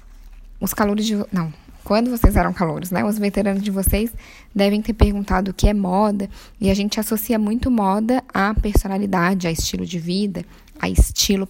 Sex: female